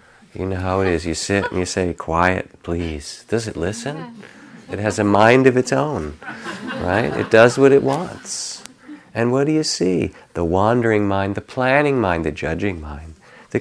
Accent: American